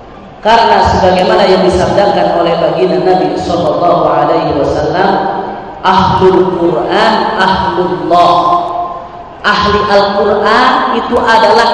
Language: Indonesian